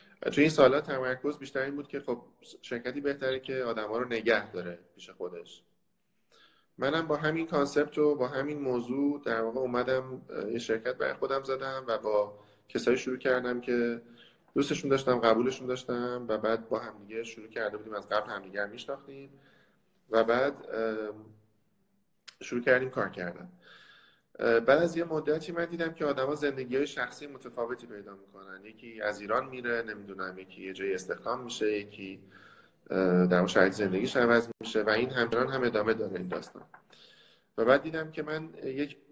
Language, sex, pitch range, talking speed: Persian, male, 105-135 Hz, 160 wpm